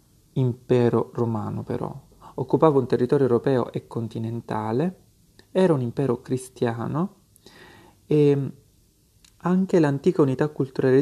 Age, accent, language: 30-49, native, Italian